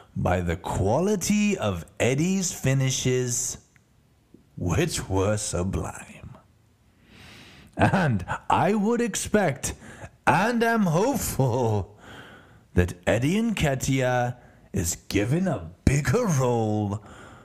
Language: English